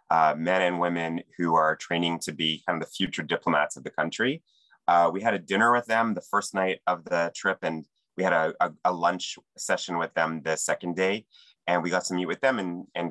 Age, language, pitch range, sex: 30-49, English, 80-95 Hz, male